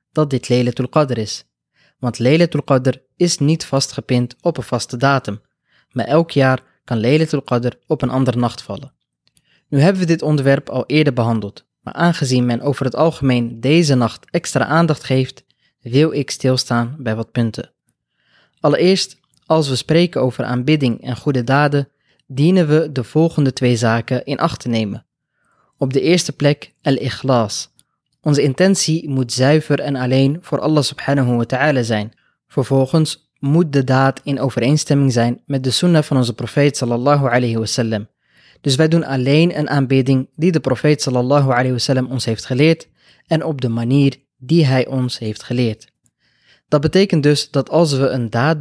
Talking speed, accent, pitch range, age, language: 170 wpm, Dutch, 125-150 Hz, 20-39, Dutch